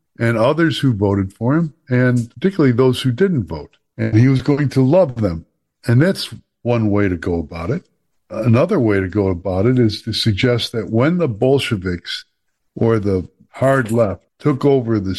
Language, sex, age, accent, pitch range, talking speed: English, male, 60-79, American, 105-135 Hz, 185 wpm